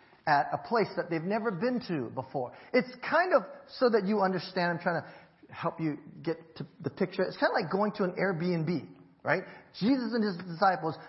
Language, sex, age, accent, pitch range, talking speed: English, male, 40-59, American, 135-200 Hz, 205 wpm